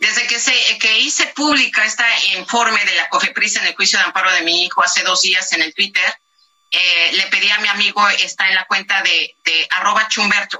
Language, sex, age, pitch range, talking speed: Spanish, female, 40-59, 185-255 Hz, 215 wpm